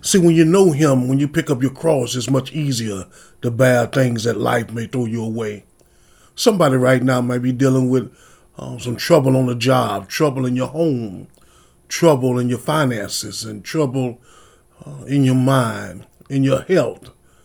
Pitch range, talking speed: 120-155 Hz, 180 wpm